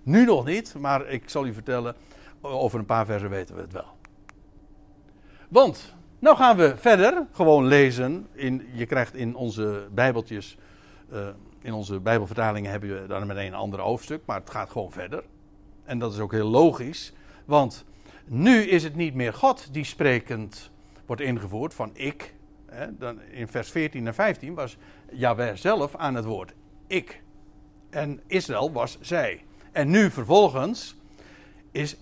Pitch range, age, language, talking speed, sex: 100-160 Hz, 60-79, Dutch, 155 wpm, male